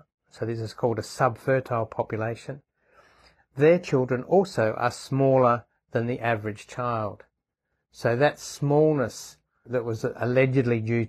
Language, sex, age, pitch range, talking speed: English, male, 60-79, 115-130 Hz, 125 wpm